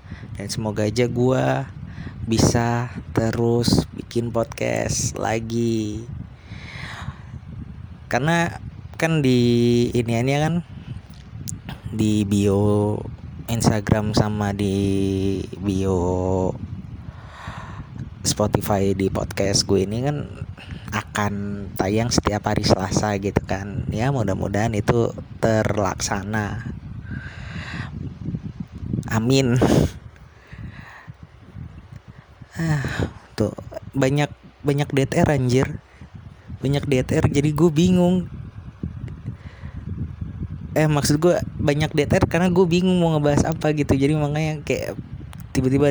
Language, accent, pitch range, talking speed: Indonesian, native, 105-135 Hz, 85 wpm